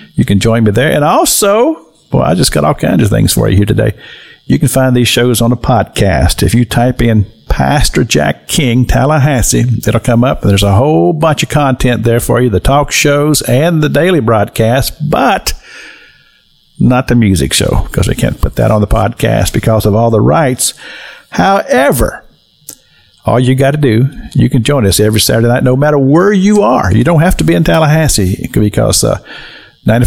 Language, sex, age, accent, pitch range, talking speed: English, male, 50-69, American, 105-135 Hz, 200 wpm